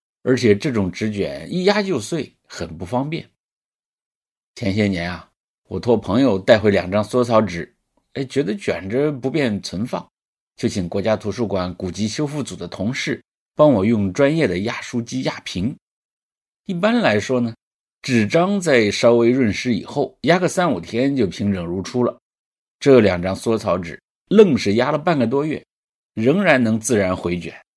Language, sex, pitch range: English, male, 95-130 Hz